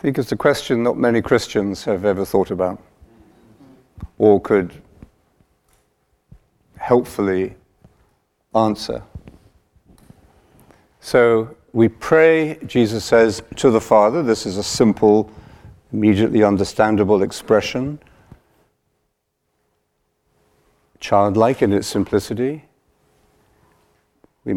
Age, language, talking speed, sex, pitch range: 50-69, English, 90 wpm, male, 100-125 Hz